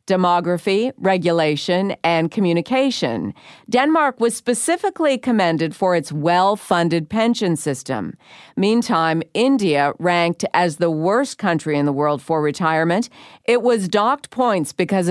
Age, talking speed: 50-69, 120 wpm